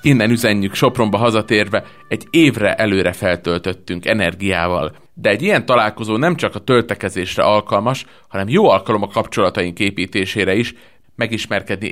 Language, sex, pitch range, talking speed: Hungarian, male, 95-115 Hz, 130 wpm